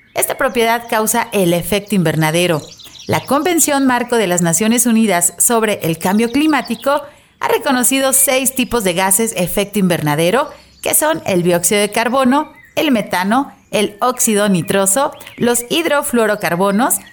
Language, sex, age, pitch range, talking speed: Spanish, female, 40-59, 185-250 Hz, 135 wpm